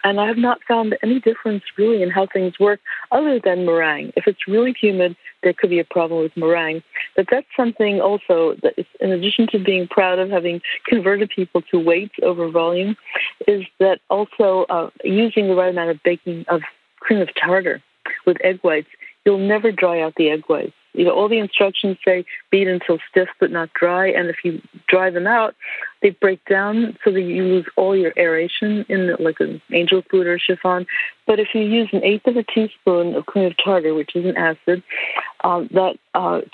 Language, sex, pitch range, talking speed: English, female, 175-210 Hz, 205 wpm